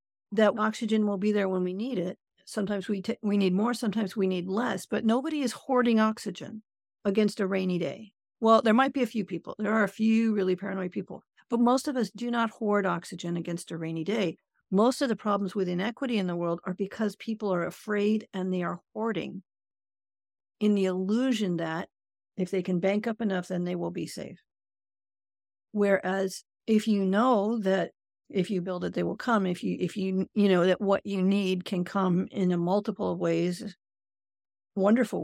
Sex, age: female, 50-69